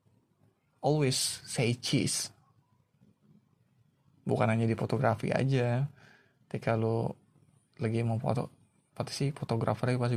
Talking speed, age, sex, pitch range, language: 100 wpm, 20-39, male, 120-150 Hz, Indonesian